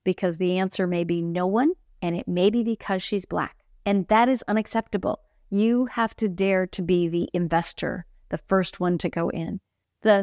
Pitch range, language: 175-210 Hz, English